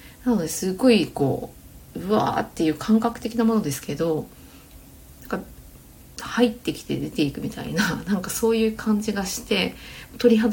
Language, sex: Japanese, female